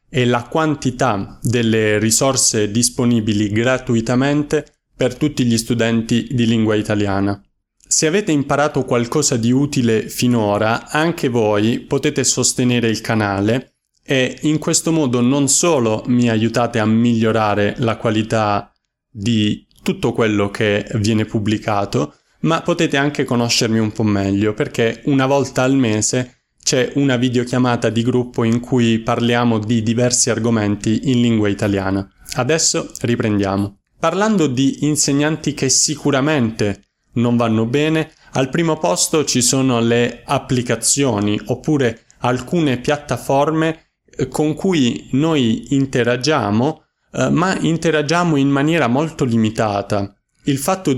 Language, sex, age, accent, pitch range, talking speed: Italian, male, 20-39, native, 110-140 Hz, 120 wpm